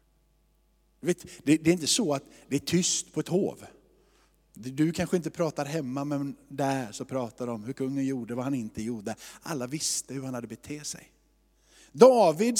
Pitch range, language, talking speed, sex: 160-225 Hz, Swedish, 170 wpm, male